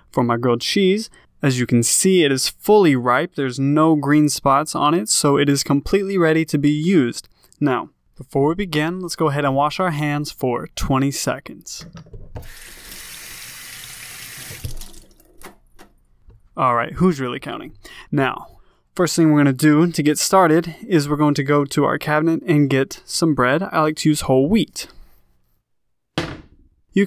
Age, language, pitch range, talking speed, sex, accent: 20-39, English, 130-160 Hz, 160 wpm, male, American